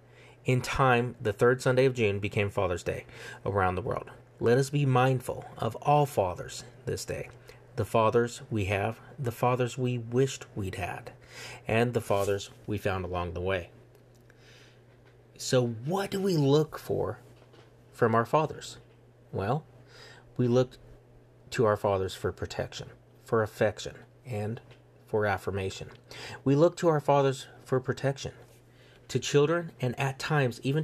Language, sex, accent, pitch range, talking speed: English, male, American, 105-130 Hz, 145 wpm